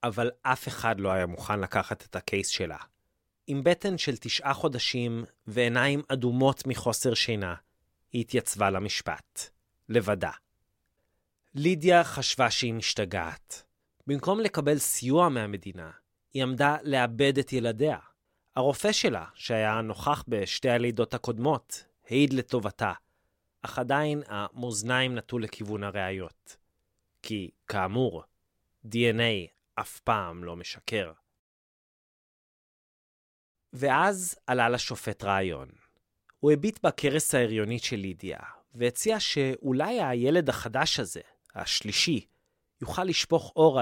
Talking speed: 105 wpm